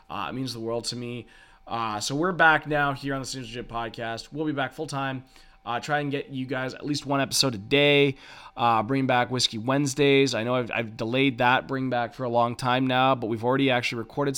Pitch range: 115-135 Hz